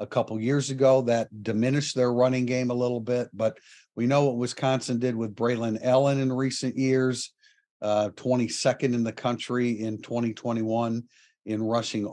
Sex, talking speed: male, 165 wpm